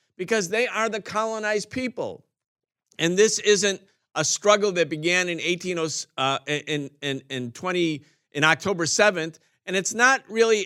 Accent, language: American, English